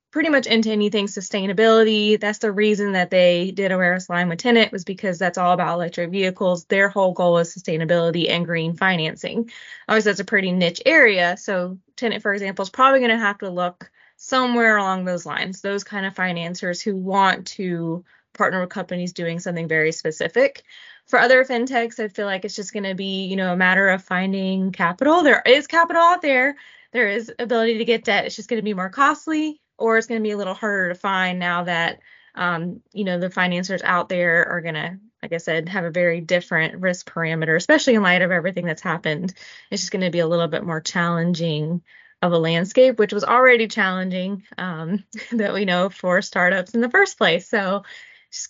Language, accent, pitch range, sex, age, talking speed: English, American, 180-215 Hz, female, 20-39, 210 wpm